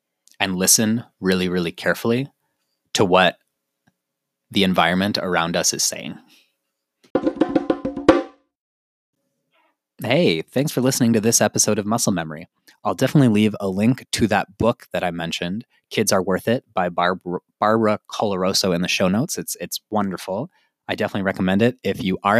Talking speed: 150 wpm